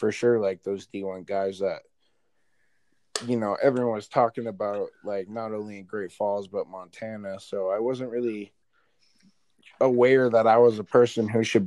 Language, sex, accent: English, male, American